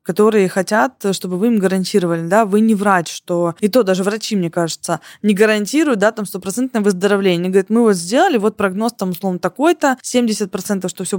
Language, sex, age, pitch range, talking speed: Russian, female, 20-39, 190-230 Hz, 195 wpm